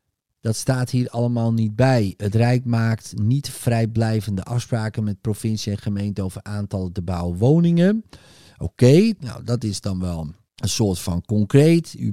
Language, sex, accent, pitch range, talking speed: Dutch, male, Dutch, 105-125 Hz, 155 wpm